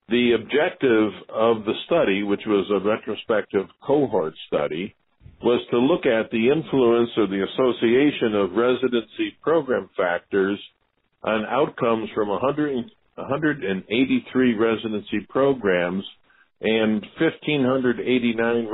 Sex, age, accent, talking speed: male, 50-69, American, 100 wpm